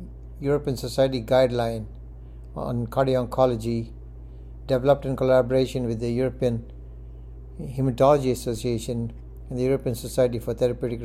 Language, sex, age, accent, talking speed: English, male, 60-79, Indian, 110 wpm